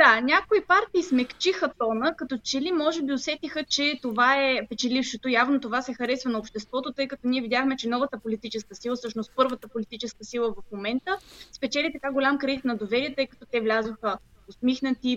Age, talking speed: 20-39, 180 wpm